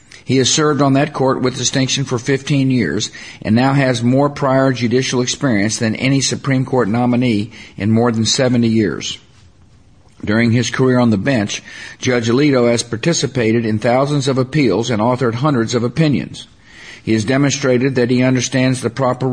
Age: 50-69